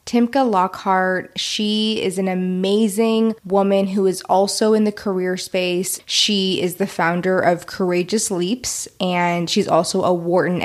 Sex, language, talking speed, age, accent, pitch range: female, English, 145 wpm, 20-39, American, 180-215 Hz